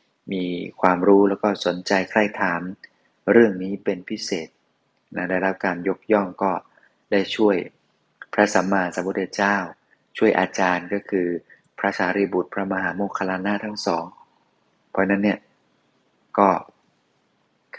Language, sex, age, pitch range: Thai, male, 20-39, 95-105 Hz